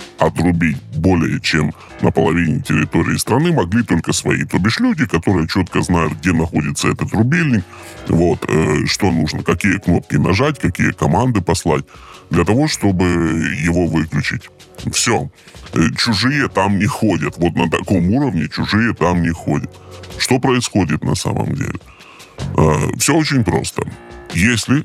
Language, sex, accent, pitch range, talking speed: Russian, female, native, 80-110 Hz, 135 wpm